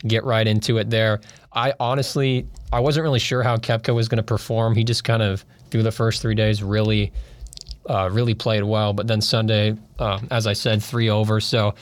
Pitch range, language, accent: 105-120 Hz, English, American